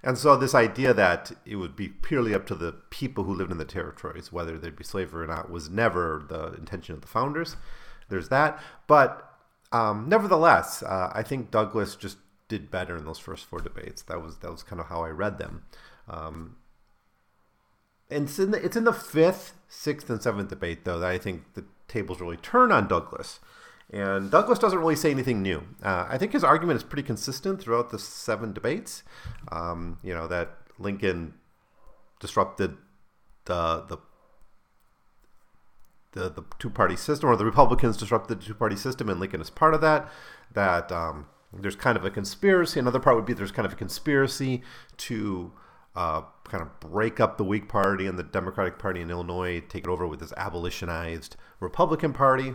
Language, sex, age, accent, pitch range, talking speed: English, male, 40-59, American, 90-130 Hz, 185 wpm